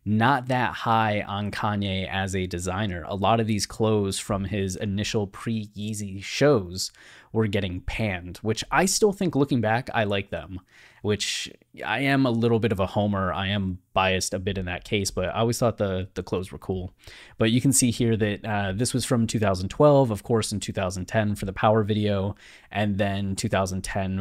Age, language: 20-39, English